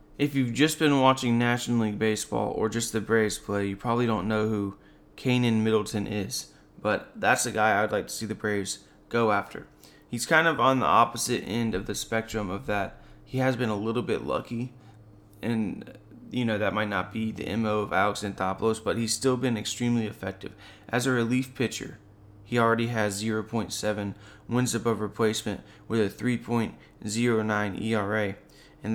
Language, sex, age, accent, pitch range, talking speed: English, male, 20-39, American, 105-125 Hz, 180 wpm